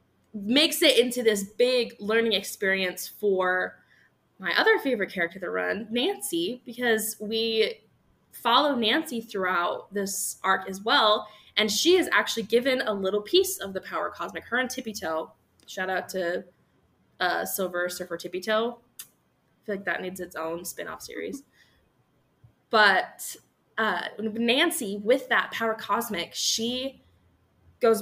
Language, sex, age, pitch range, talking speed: English, female, 20-39, 185-240 Hz, 140 wpm